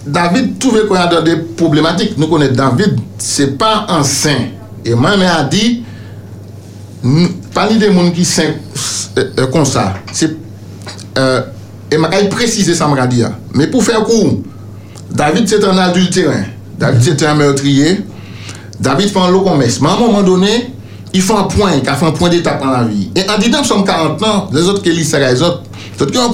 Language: French